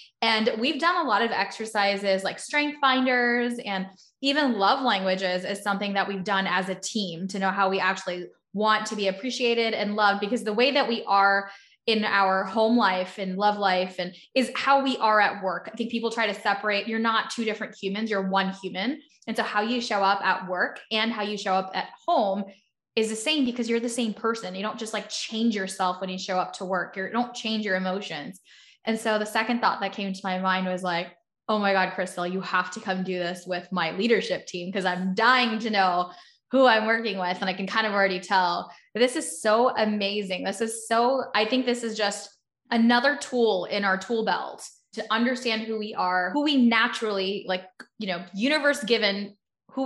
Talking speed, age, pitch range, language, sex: 220 wpm, 10-29, 190-230 Hz, English, female